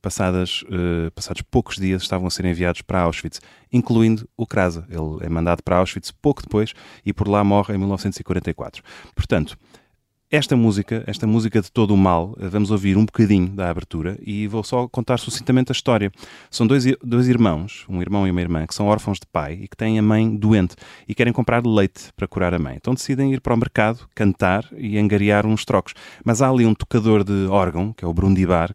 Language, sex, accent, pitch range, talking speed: Portuguese, male, Portuguese, 85-110 Hz, 205 wpm